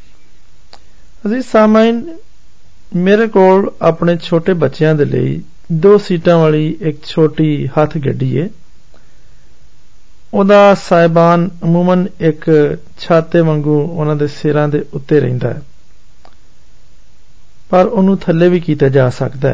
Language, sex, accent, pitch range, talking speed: Hindi, male, native, 150-190 Hz, 75 wpm